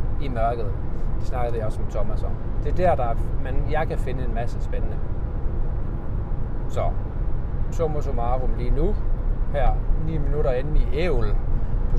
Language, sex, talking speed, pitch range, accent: Danish, male, 165 wpm, 105-125 Hz, native